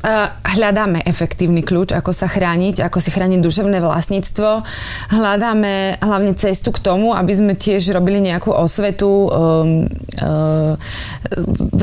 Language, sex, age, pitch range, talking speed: Slovak, female, 20-39, 175-205 Hz, 125 wpm